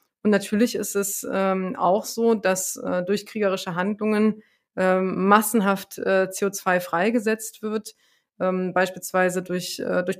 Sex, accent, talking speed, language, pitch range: female, German, 130 wpm, German, 180-200 Hz